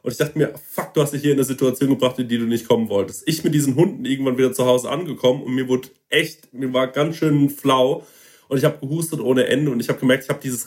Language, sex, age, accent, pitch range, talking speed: German, male, 30-49, German, 130-150 Hz, 280 wpm